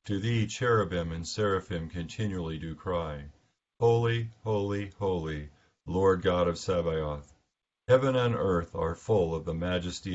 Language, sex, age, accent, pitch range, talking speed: English, male, 50-69, American, 85-105 Hz, 135 wpm